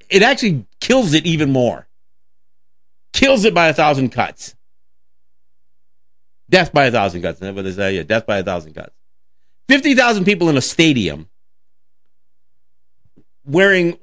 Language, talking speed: English, 120 wpm